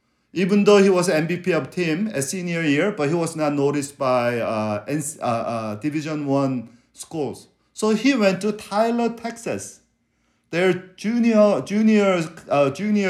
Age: 50-69